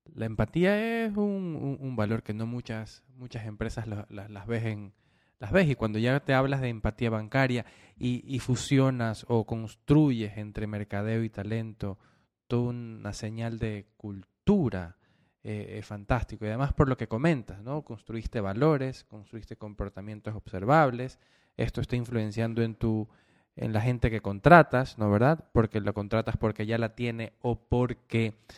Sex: male